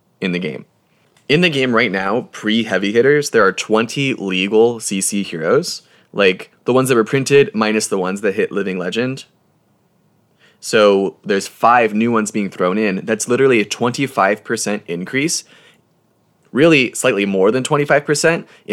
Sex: male